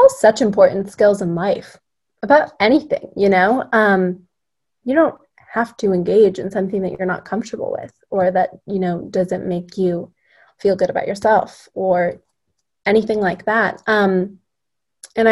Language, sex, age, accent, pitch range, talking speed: English, female, 20-39, American, 185-225 Hz, 155 wpm